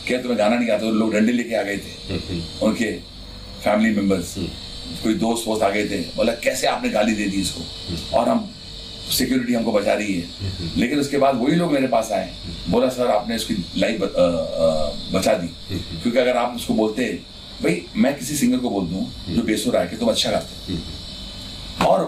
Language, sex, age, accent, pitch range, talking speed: Hindi, male, 40-59, native, 90-130 Hz, 185 wpm